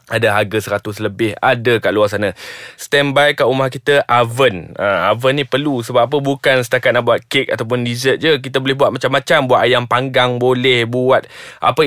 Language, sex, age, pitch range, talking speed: Malay, male, 20-39, 120-155 Hz, 185 wpm